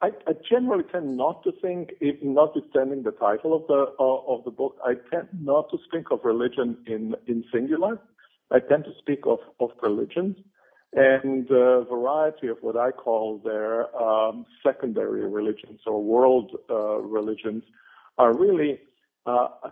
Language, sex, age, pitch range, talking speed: English, male, 50-69, 110-145 Hz, 155 wpm